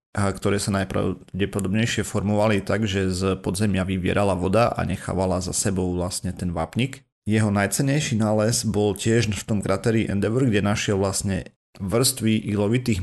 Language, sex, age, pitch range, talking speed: Slovak, male, 30-49, 95-115 Hz, 145 wpm